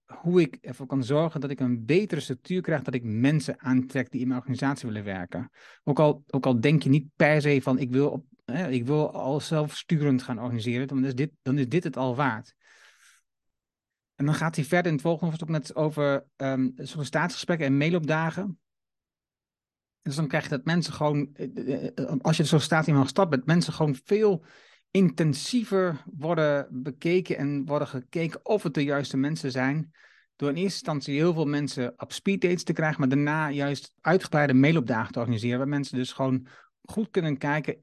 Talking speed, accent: 190 wpm, Dutch